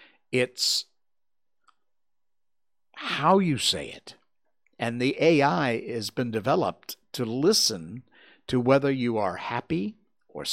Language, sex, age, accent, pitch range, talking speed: English, male, 50-69, American, 120-160 Hz, 110 wpm